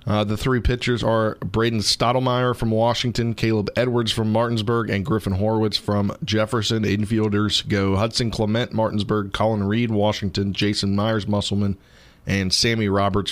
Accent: American